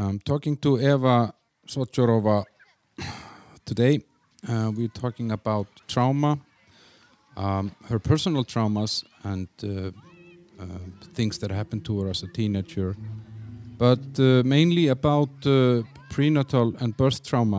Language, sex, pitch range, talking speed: English, male, 100-130 Hz, 125 wpm